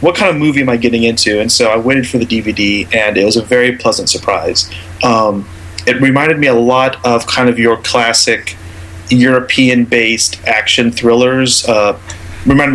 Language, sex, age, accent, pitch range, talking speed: English, male, 30-49, American, 90-125 Hz, 180 wpm